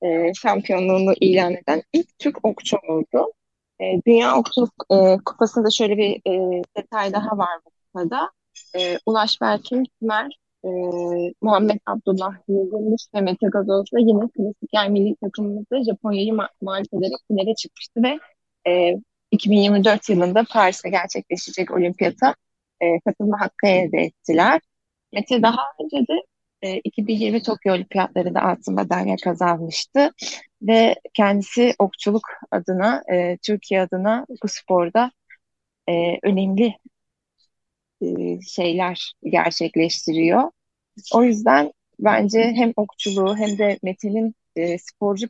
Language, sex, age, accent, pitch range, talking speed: Turkish, female, 30-49, native, 185-220 Hz, 120 wpm